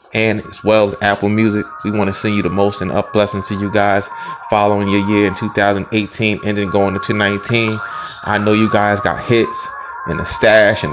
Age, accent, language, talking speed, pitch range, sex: 20-39, American, English, 215 wpm, 95-120 Hz, male